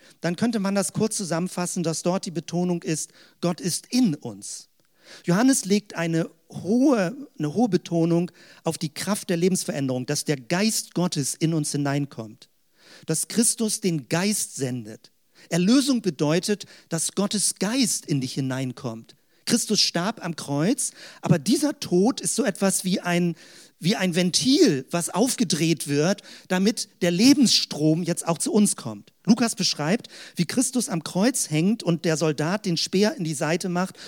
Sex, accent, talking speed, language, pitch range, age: male, German, 155 wpm, German, 160-215 Hz, 50-69